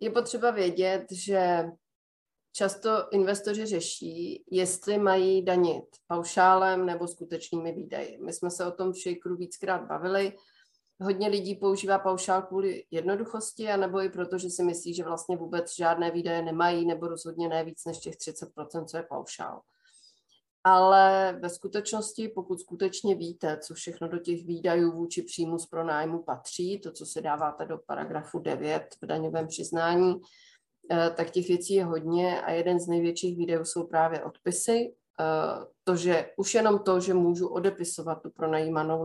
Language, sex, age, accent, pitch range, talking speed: Czech, female, 30-49, native, 165-190 Hz, 150 wpm